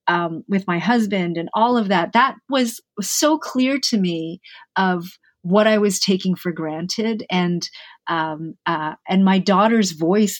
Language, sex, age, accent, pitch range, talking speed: English, female, 40-59, American, 180-225 Hz, 165 wpm